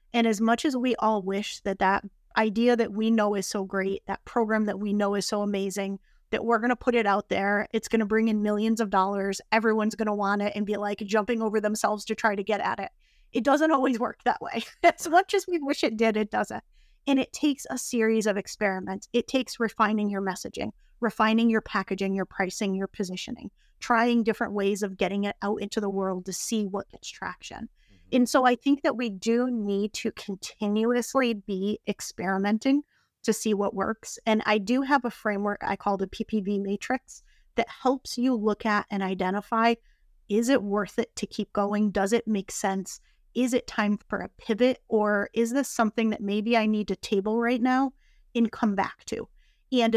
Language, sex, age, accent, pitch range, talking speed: English, female, 30-49, American, 205-235 Hz, 210 wpm